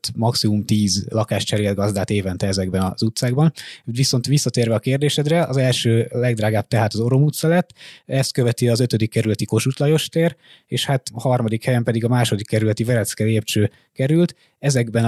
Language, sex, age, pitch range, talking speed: Hungarian, male, 20-39, 110-130 Hz, 150 wpm